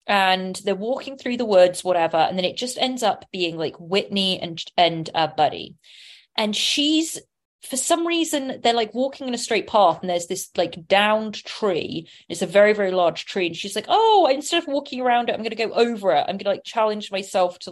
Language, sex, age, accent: English, female, 20-39, British